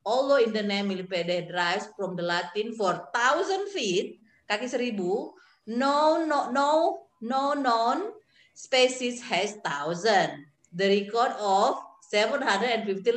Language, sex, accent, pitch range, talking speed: Indonesian, female, native, 190-280 Hz, 110 wpm